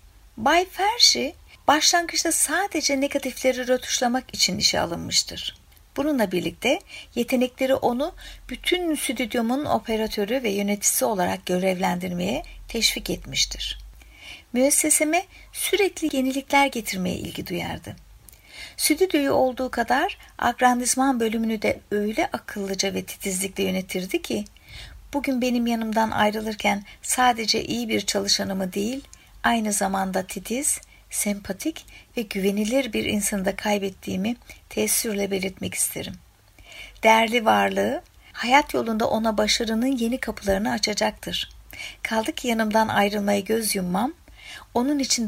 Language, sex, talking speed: Turkish, female, 105 wpm